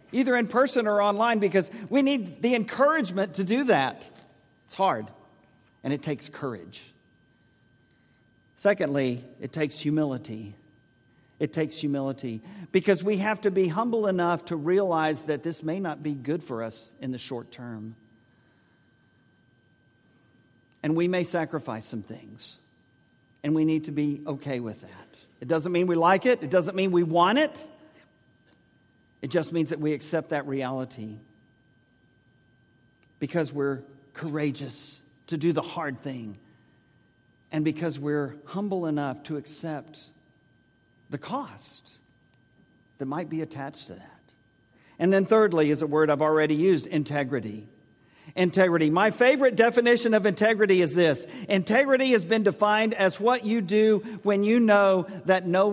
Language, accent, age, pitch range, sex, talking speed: English, American, 50-69, 130-195 Hz, male, 145 wpm